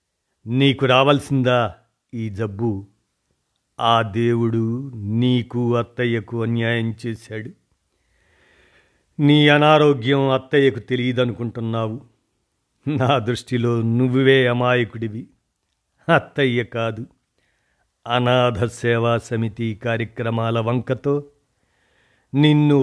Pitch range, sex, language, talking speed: 115-140 Hz, male, Telugu, 70 wpm